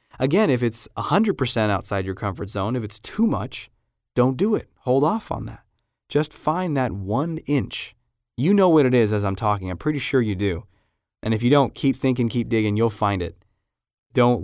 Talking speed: 205 wpm